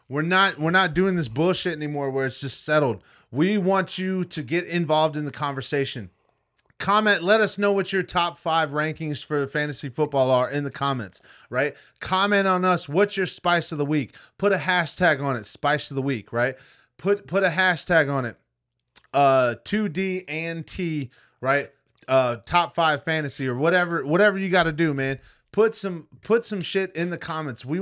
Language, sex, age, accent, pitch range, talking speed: English, male, 30-49, American, 135-175 Hz, 190 wpm